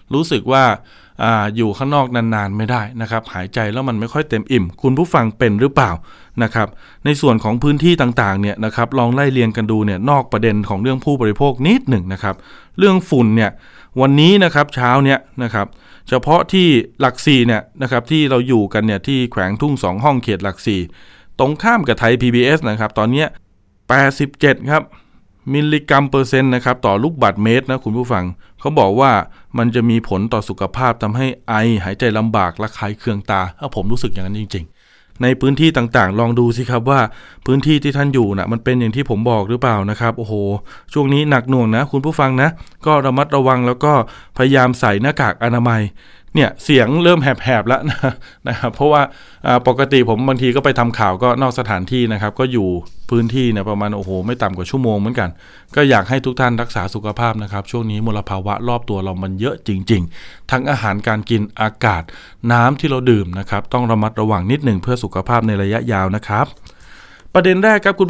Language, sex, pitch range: Thai, male, 105-135 Hz